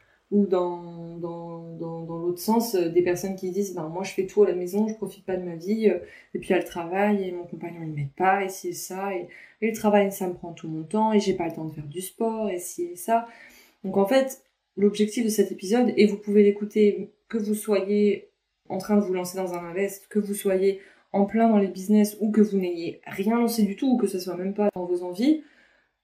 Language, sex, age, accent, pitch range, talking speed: French, female, 20-39, French, 175-210 Hz, 255 wpm